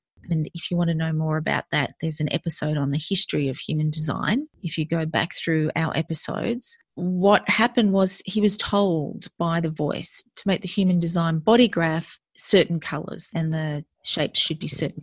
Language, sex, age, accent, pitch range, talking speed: English, female, 30-49, Australian, 160-205 Hz, 195 wpm